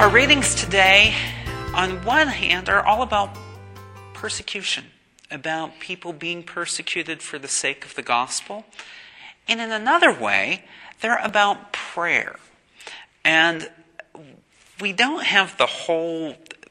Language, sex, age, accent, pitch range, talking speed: English, male, 40-59, American, 130-180 Hz, 120 wpm